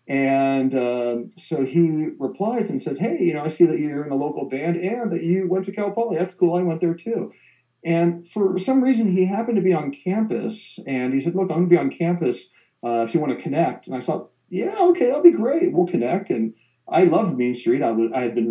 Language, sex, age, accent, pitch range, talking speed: English, male, 40-59, American, 120-175 Hz, 250 wpm